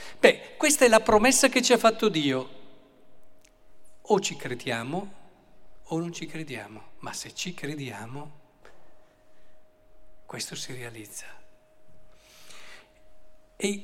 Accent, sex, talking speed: native, male, 110 wpm